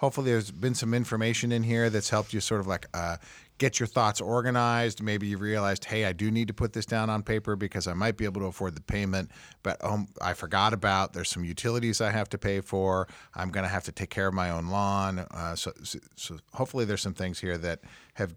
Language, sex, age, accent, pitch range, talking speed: English, male, 50-69, American, 90-110 Hz, 240 wpm